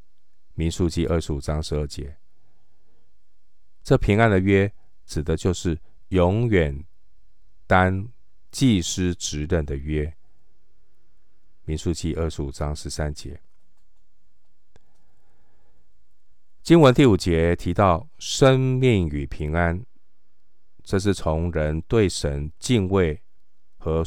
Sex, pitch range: male, 75-95 Hz